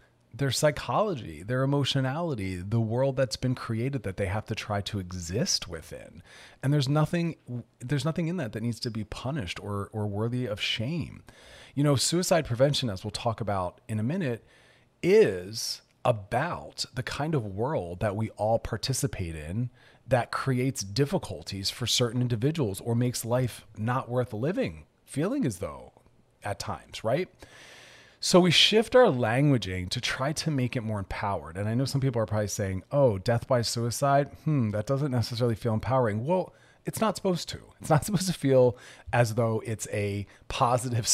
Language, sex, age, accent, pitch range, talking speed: English, male, 30-49, American, 110-135 Hz, 175 wpm